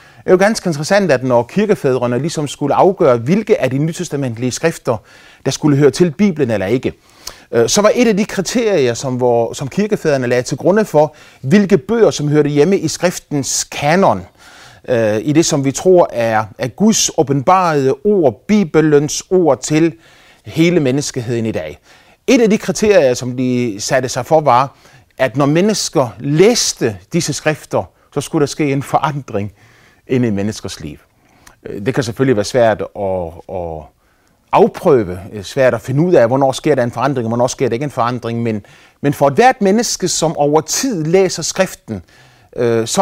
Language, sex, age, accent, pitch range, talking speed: Danish, male, 30-49, native, 125-185 Hz, 170 wpm